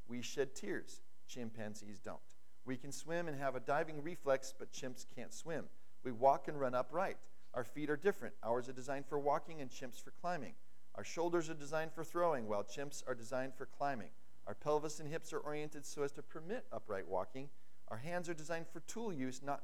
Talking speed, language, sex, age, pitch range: 205 wpm, English, male, 40-59, 125-160 Hz